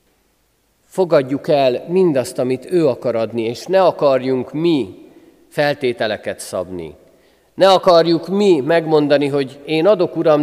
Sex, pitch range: male, 110-150 Hz